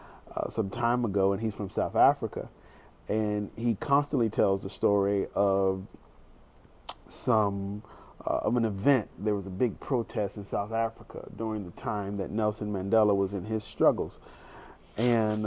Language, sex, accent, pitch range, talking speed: English, male, American, 100-120 Hz, 155 wpm